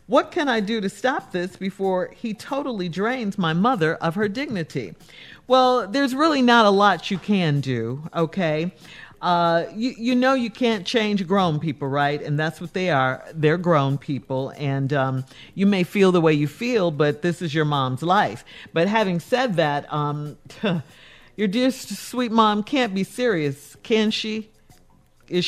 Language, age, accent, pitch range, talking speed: English, 50-69, American, 155-220 Hz, 175 wpm